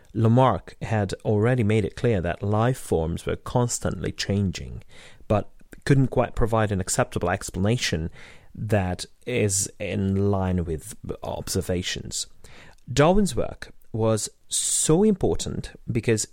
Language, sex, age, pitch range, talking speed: English, male, 30-49, 95-125 Hz, 115 wpm